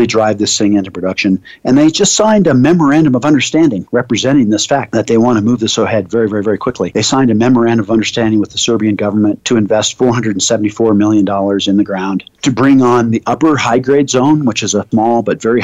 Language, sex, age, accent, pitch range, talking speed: English, male, 50-69, American, 105-120 Hz, 220 wpm